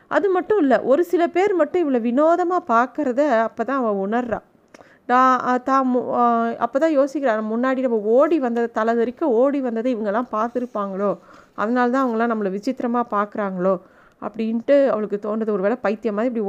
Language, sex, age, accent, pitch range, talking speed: Tamil, female, 30-49, native, 215-260 Hz, 155 wpm